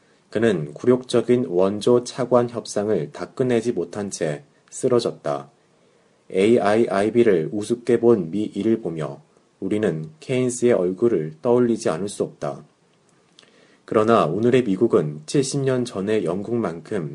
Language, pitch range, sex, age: Korean, 100-120 Hz, male, 30-49